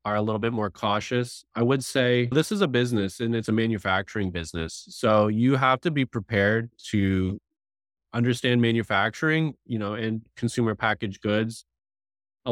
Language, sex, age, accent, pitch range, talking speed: English, male, 20-39, American, 95-120 Hz, 165 wpm